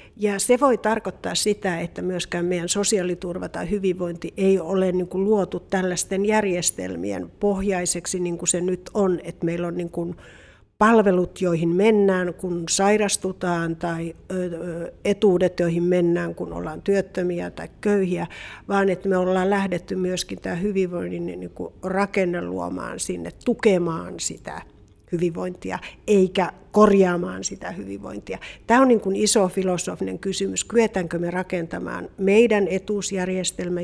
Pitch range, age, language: 170-195 Hz, 50-69, Finnish